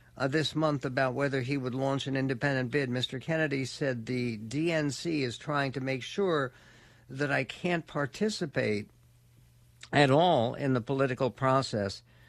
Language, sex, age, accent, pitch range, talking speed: English, male, 60-79, American, 120-145 Hz, 150 wpm